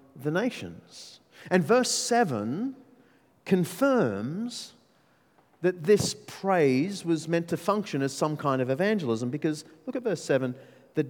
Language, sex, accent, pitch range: English, male, Australian, 150-225 Hz